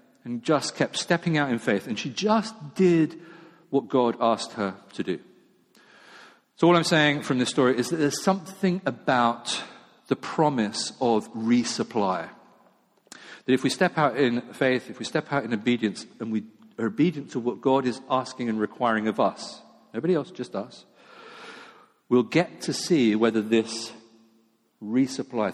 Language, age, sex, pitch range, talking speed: English, 50-69, male, 125-165 Hz, 165 wpm